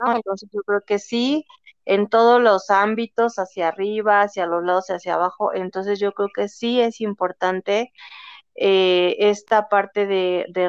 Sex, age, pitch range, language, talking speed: female, 30-49, 180-210 Hz, Spanish, 165 wpm